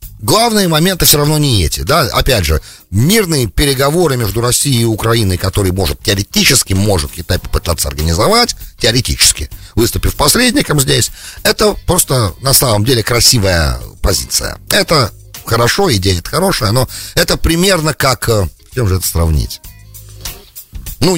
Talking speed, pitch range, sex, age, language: 135 wpm, 95-135 Hz, male, 40-59, English